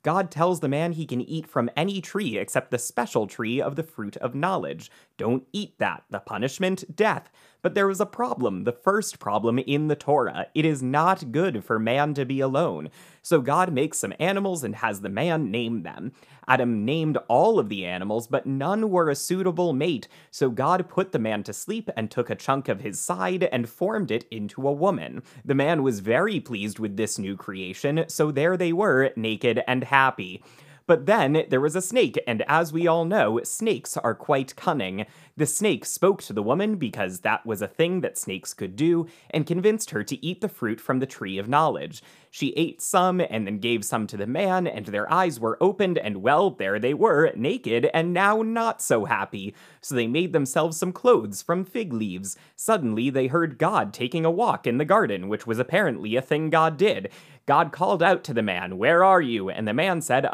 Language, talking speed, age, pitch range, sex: English, 210 wpm, 30-49, 120-180 Hz, male